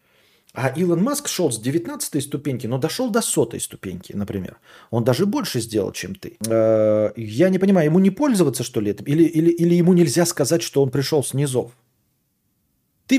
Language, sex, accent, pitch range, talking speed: Russian, male, native, 115-165 Hz, 175 wpm